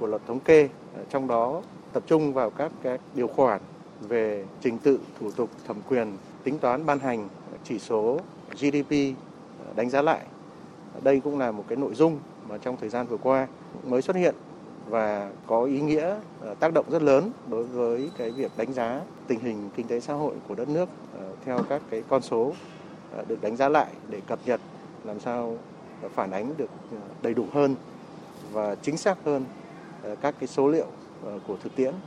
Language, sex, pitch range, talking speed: Vietnamese, male, 115-145 Hz, 185 wpm